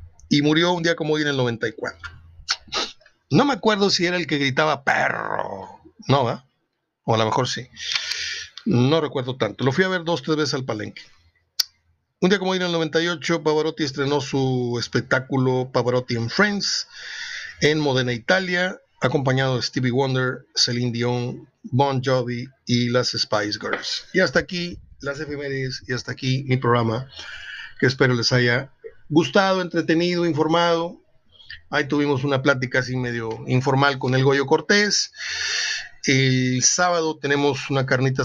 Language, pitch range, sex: Spanish, 125-165 Hz, male